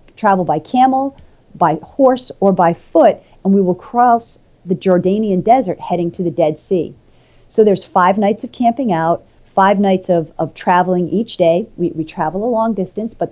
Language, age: English, 40-59